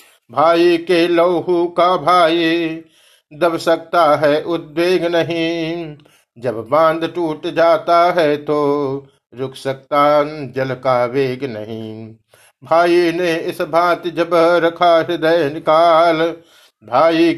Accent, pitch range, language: native, 140-170 Hz, Hindi